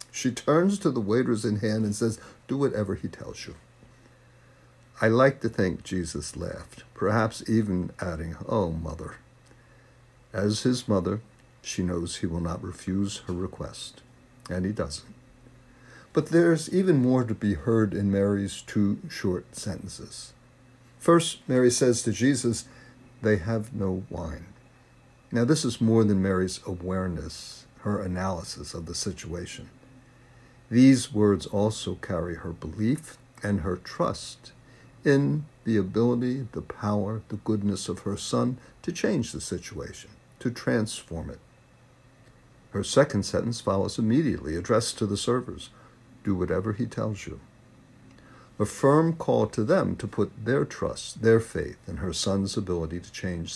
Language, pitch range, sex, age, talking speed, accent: English, 95-125 Hz, male, 60-79, 145 wpm, American